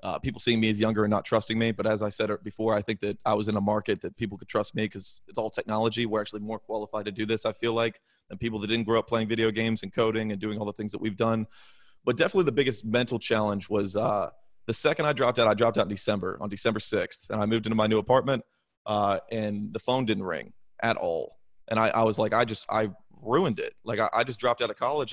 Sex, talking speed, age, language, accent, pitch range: male, 275 wpm, 30-49, English, American, 110-120 Hz